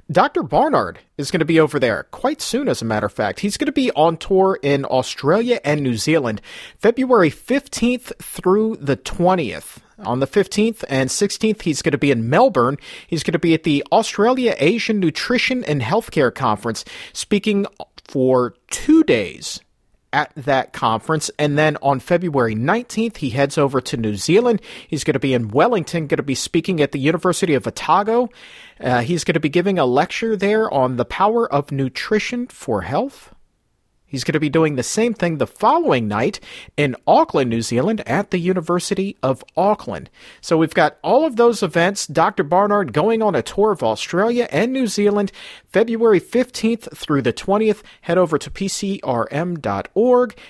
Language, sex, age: English, male, 40-59